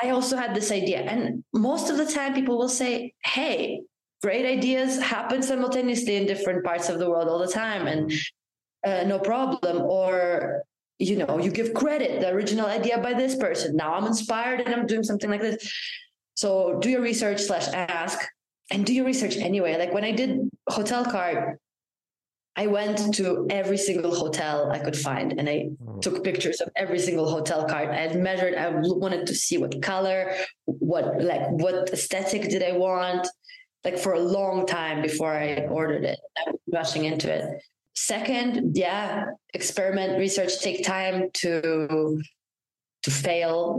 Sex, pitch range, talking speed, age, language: female, 170-240 Hz, 170 wpm, 20-39, English